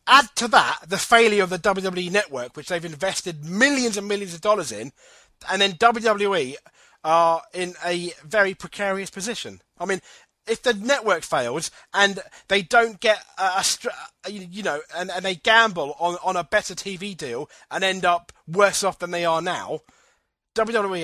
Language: English